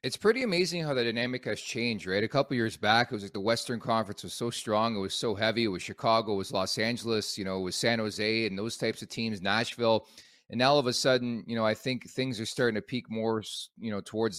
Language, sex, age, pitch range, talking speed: English, male, 30-49, 105-125 Hz, 270 wpm